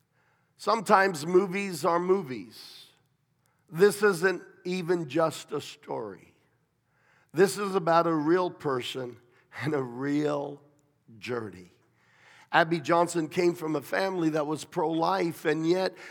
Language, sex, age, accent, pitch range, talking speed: English, male, 50-69, American, 145-175 Hz, 115 wpm